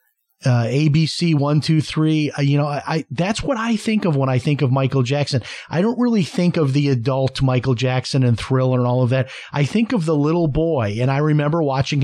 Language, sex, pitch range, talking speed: English, male, 130-155 Hz, 230 wpm